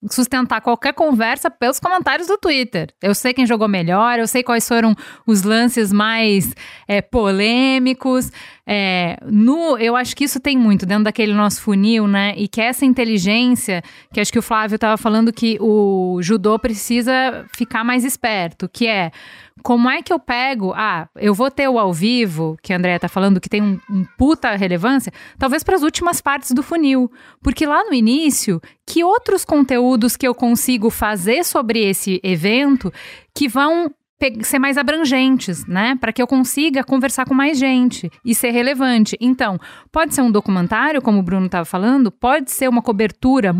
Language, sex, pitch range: Portuguese, female, 210-265 Hz